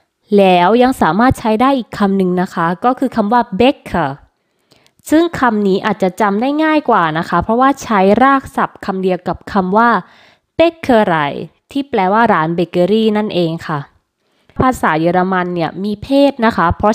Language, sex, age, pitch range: Thai, female, 20-39, 180-240 Hz